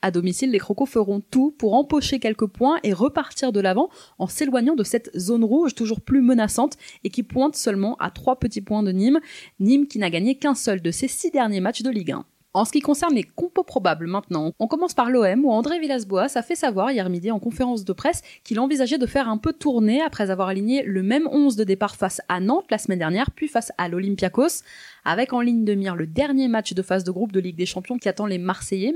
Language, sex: French, female